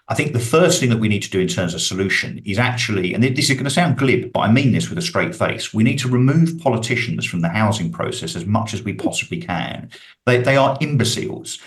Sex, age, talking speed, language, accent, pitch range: male, 50-69, 250 wpm, English, British, 100-130 Hz